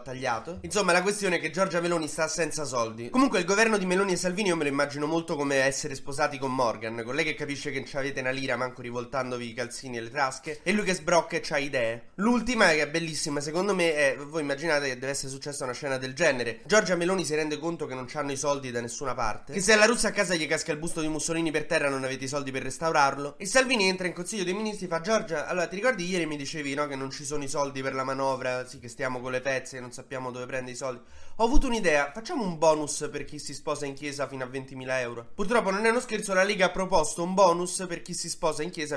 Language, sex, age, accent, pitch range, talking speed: Italian, male, 20-39, native, 135-180 Hz, 265 wpm